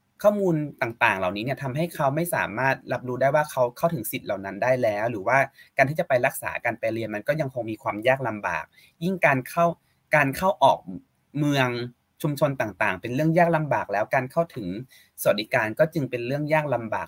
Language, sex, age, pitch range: Thai, male, 20-39, 125-170 Hz